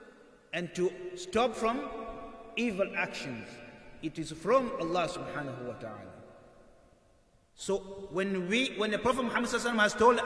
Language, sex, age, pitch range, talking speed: English, male, 30-49, 160-250 Hz, 130 wpm